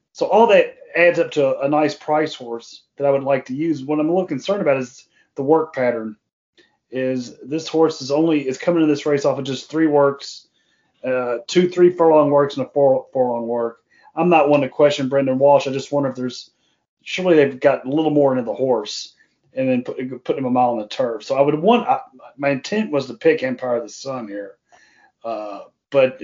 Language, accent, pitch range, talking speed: English, American, 130-150 Hz, 225 wpm